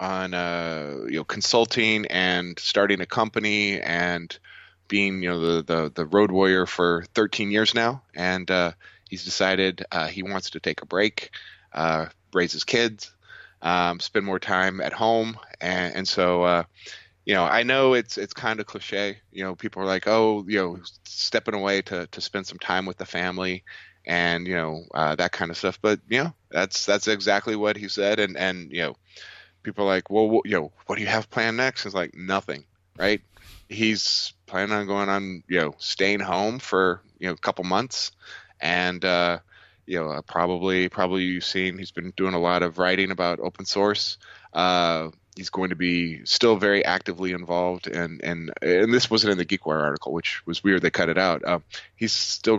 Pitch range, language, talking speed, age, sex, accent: 90-100 Hz, English, 200 wpm, 20-39, male, American